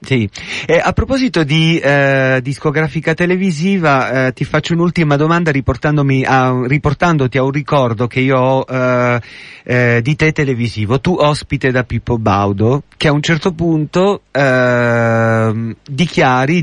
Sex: male